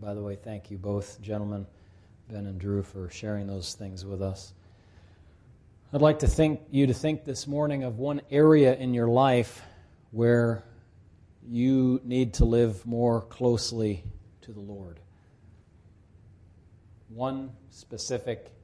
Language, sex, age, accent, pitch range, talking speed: English, male, 40-59, American, 95-115 Hz, 140 wpm